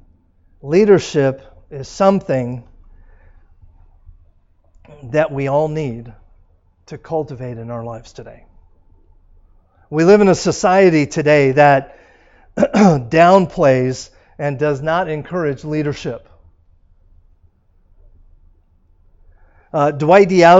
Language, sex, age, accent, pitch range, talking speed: English, male, 50-69, American, 125-175 Hz, 80 wpm